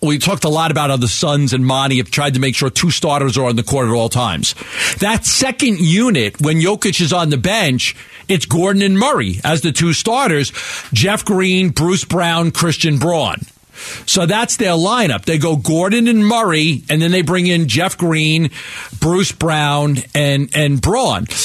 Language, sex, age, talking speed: English, male, 50-69, 190 wpm